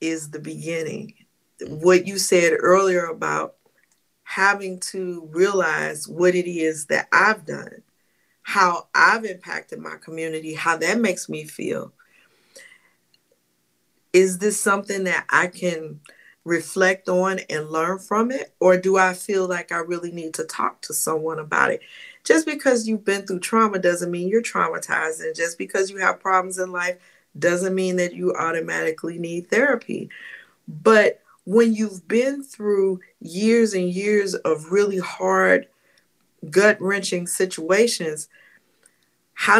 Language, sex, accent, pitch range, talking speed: English, female, American, 160-200 Hz, 140 wpm